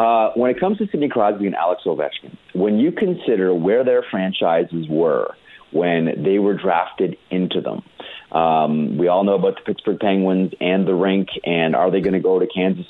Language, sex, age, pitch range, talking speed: English, male, 30-49, 85-100 Hz, 195 wpm